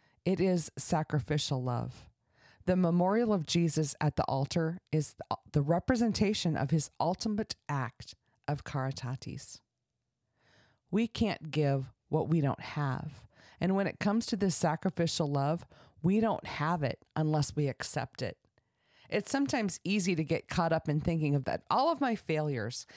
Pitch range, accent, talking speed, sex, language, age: 130-175 Hz, American, 155 wpm, female, English, 40-59